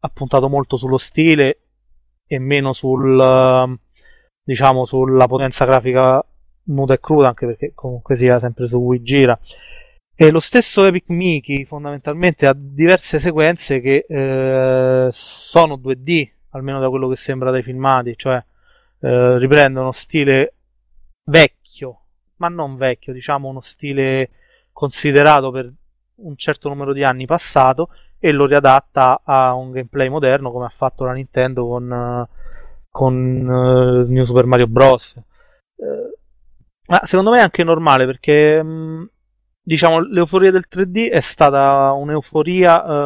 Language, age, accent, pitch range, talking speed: Italian, 30-49, native, 130-150 Hz, 140 wpm